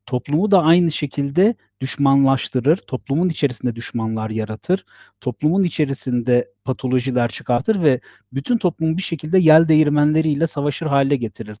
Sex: male